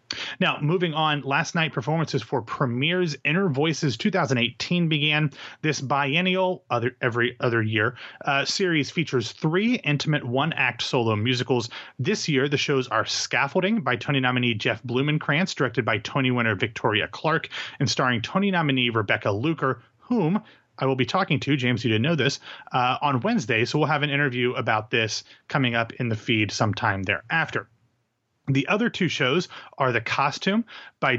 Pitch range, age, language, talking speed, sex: 115-155 Hz, 30-49, English, 165 wpm, male